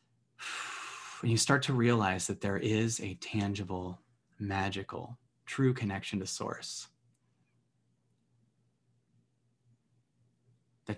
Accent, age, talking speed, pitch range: American, 20-39, 85 wpm, 105-125 Hz